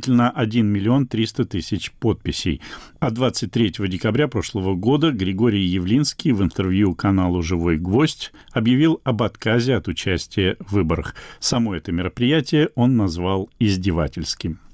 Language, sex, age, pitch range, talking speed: Russian, male, 50-69, 100-125 Hz, 130 wpm